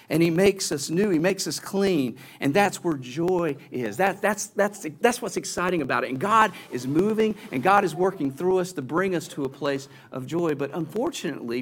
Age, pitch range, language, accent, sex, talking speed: 50-69, 145-205 Hz, English, American, male, 215 wpm